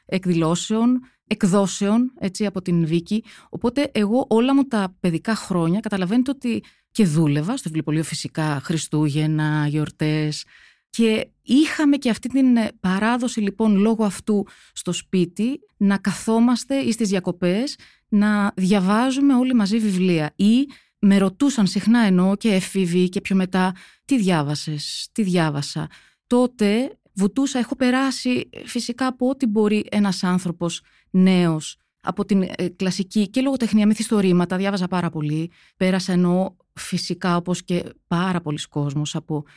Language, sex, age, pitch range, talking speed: Greek, female, 20-39, 160-215 Hz, 130 wpm